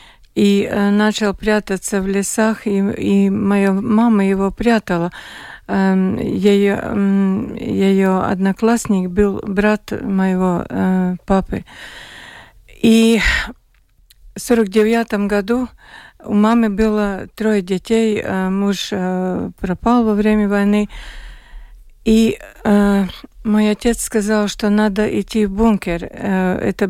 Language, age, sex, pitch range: Russian, 50-69, female, 190-215 Hz